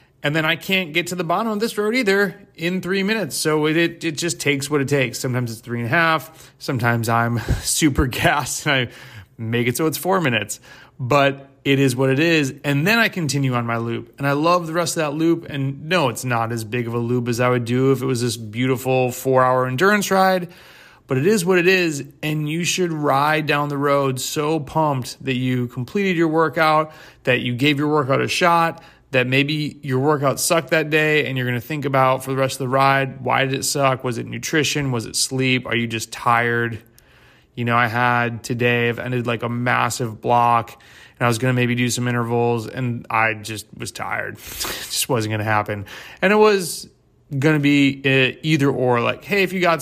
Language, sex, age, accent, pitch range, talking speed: English, male, 30-49, American, 120-155 Hz, 225 wpm